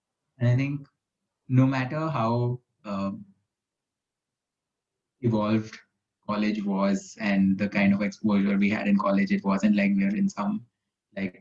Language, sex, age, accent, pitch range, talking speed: English, male, 20-39, Indian, 105-170 Hz, 135 wpm